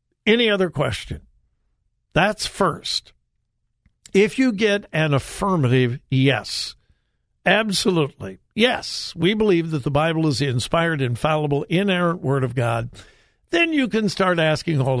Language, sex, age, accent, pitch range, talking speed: English, male, 60-79, American, 135-200 Hz, 130 wpm